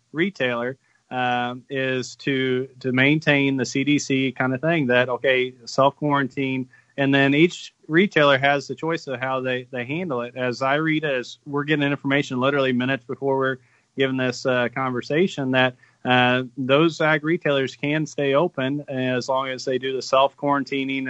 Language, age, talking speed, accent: English, 30-49, 160 wpm, American